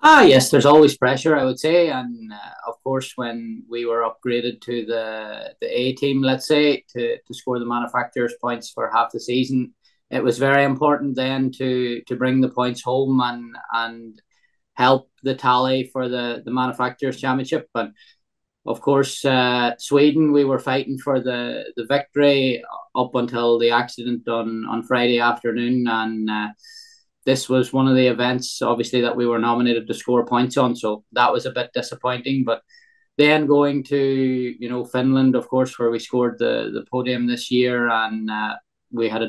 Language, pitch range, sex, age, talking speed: English, 120-140 Hz, male, 20-39, 180 wpm